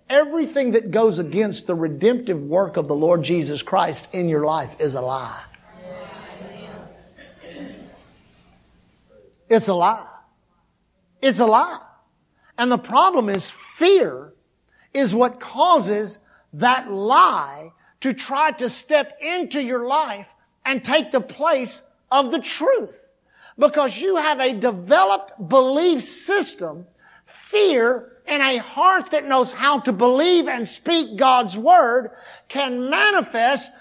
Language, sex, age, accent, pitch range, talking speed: English, male, 50-69, American, 195-295 Hz, 125 wpm